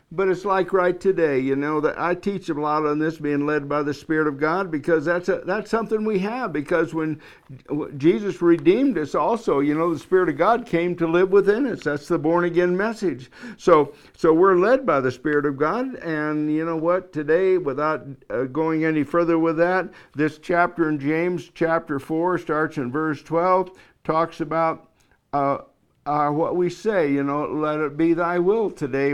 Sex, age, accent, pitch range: male, 60-79, American, 150-180 Hz